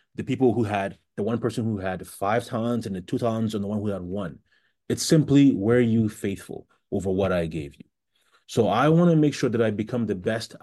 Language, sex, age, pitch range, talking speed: English, male, 30-49, 95-115 Hz, 235 wpm